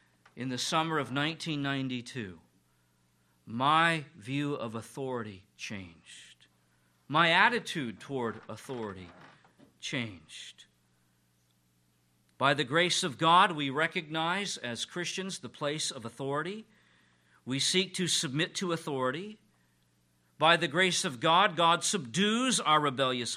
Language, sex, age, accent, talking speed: English, male, 50-69, American, 110 wpm